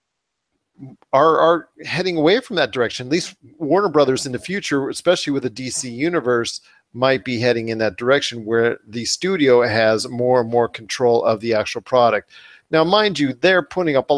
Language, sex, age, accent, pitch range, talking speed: English, male, 40-59, American, 120-150 Hz, 185 wpm